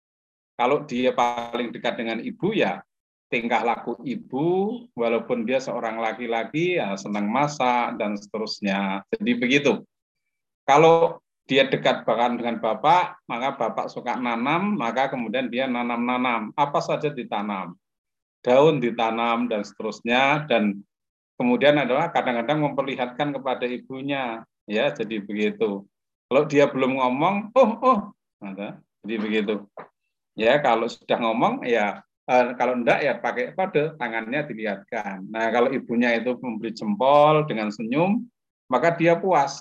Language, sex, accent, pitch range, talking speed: Indonesian, male, native, 115-150 Hz, 125 wpm